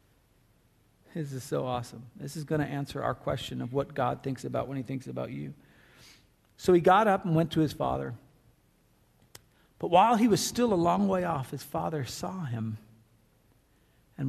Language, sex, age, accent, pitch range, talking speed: English, male, 50-69, American, 130-170 Hz, 180 wpm